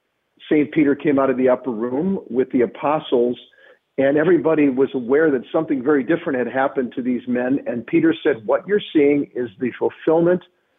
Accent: American